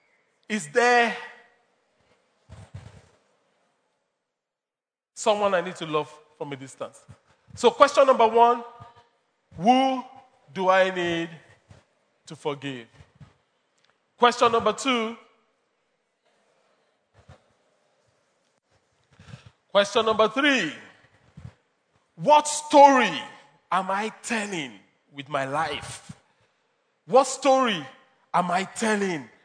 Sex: male